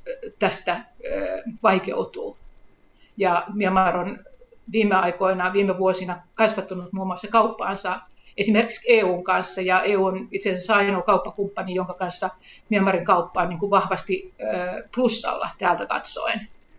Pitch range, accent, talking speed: 185-215 Hz, native, 120 wpm